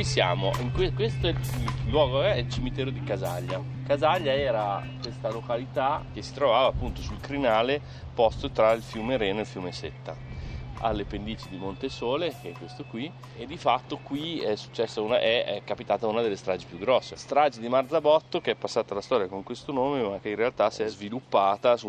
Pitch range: 95-130 Hz